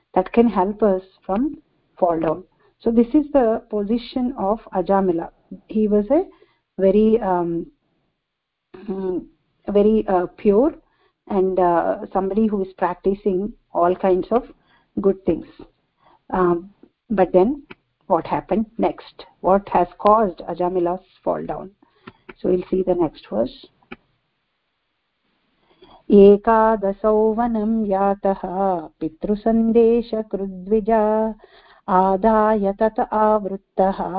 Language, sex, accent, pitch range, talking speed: English, female, Indian, 185-220 Hz, 100 wpm